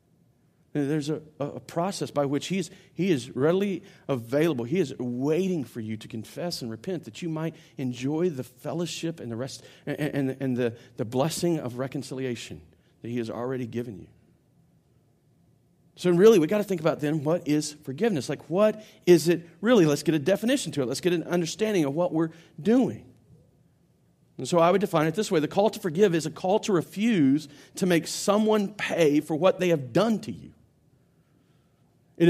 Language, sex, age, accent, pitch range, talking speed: English, male, 40-59, American, 150-205 Hz, 190 wpm